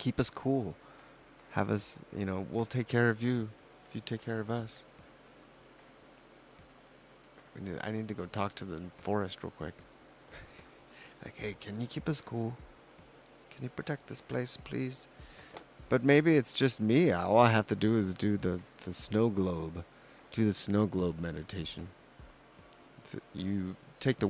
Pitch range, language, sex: 90-110 Hz, English, male